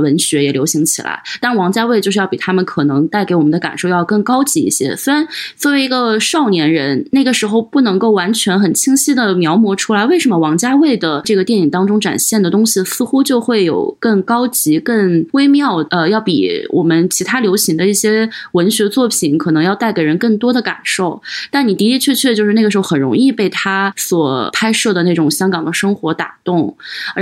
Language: Chinese